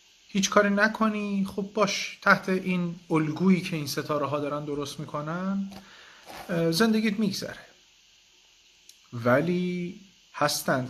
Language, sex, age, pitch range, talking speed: Persian, male, 40-59, 135-180 Hz, 105 wpm